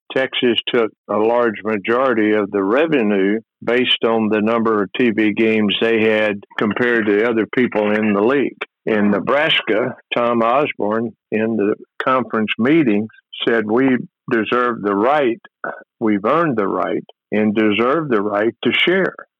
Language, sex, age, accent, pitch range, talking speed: English, male, 60-79, American, 110-120 Hz, 150 wpm